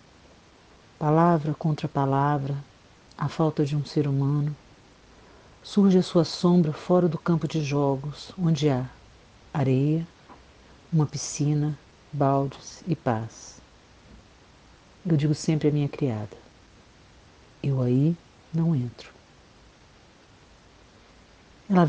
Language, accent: Portuguese, Brazilian